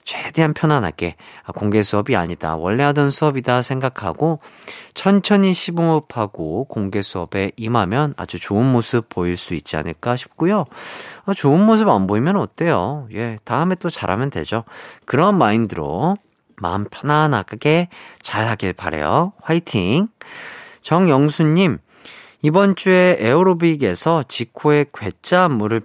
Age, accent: 40-59, native